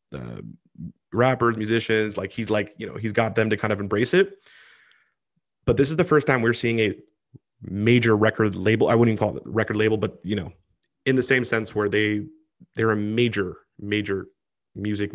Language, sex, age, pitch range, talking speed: English, male, 20-39, 105-120 Hz, 195 wpm